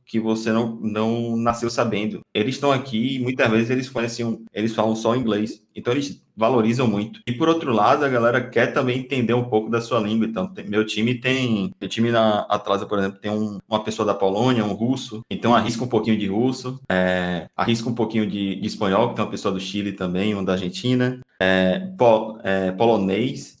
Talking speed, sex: 210 wpm, male